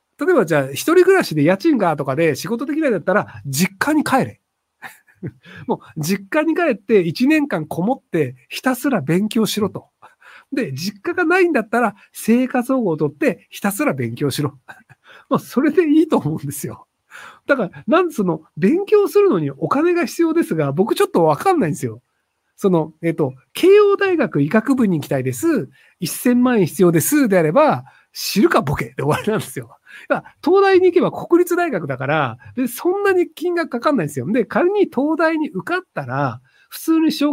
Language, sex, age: Japanese, male, 50-69